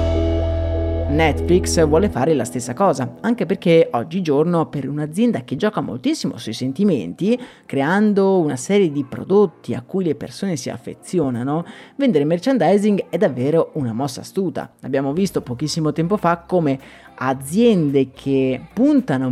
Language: Italian